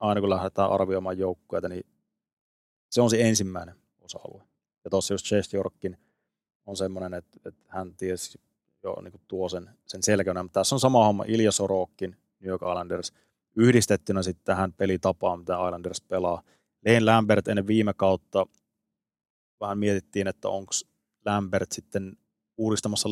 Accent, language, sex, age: native, Finnish, male, 30-49